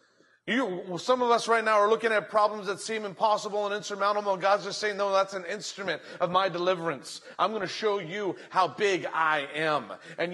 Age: 30-49